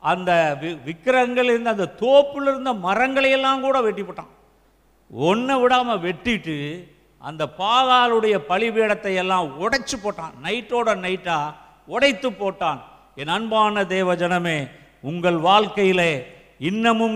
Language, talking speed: Tamil, 100 wpm